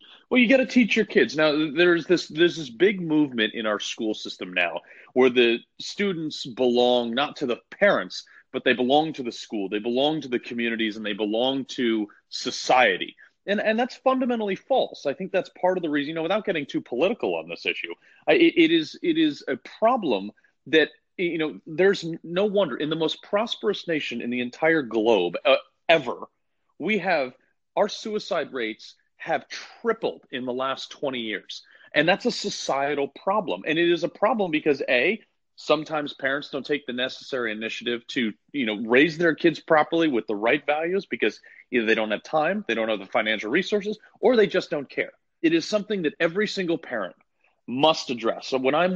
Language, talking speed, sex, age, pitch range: English, 190 wpm, male, 30-49, 125-195 Hz